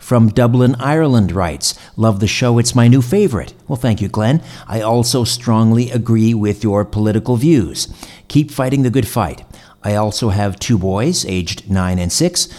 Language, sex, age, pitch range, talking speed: English, male, 50-69, 100-125 Hz, 175 wpm